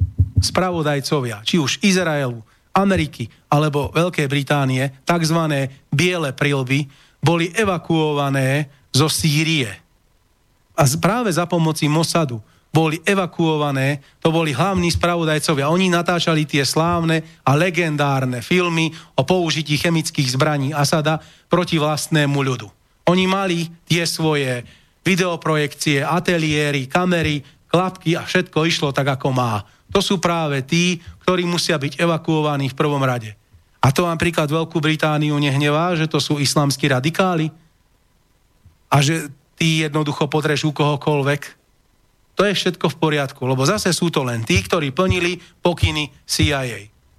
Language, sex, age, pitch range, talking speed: Slovak, male, 40-59, 140-170 Hz, 125 wpm